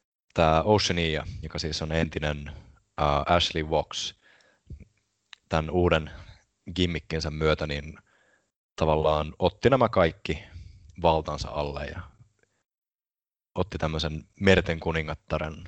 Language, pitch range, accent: English, 80-90 Hz, Finnish